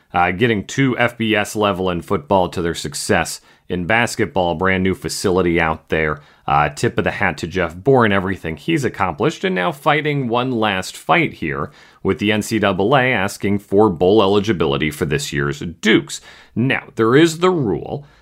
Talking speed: 170 wpm